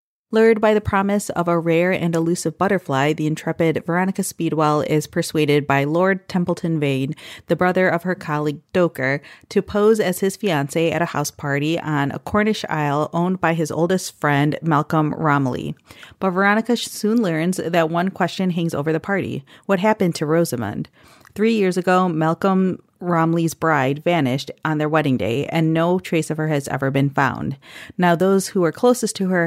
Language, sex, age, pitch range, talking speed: English, female, 30-49, 155-185 Hz, 180 wpm